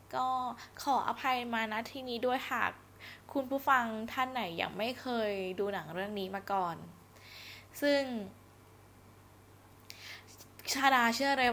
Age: 10-29